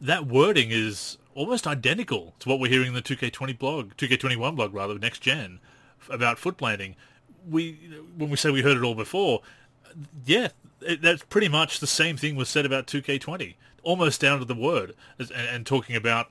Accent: Australian